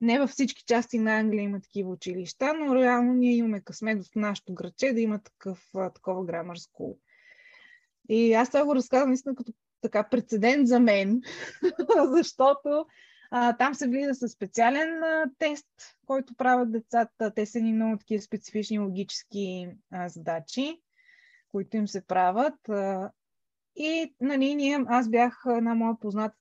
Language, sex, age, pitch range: Bulgarian, female, 20-39, 210-280 Hz